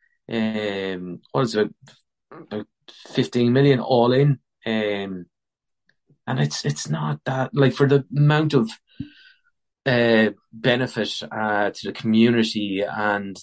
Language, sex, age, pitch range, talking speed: English, male, 30-49, 105-115 Hz, 120 wpm